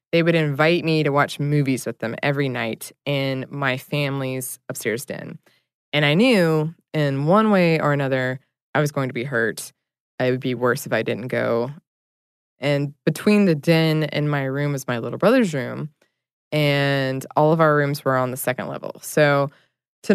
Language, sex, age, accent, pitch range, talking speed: English, female, 20-39, American, 135-165 Hz, 185 wpm